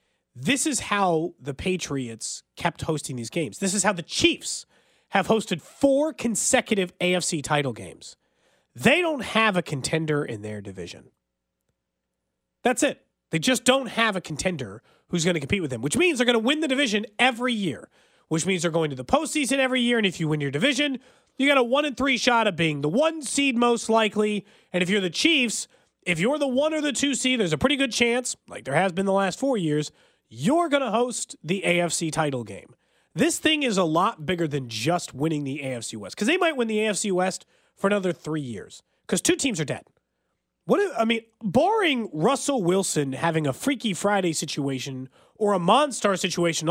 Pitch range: 160-250 Hz